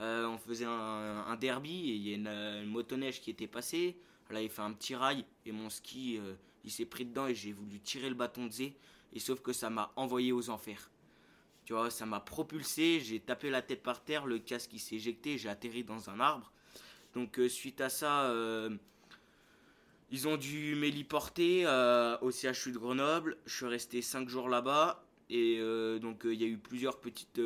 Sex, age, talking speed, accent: male, 20-39, 220 wpm, French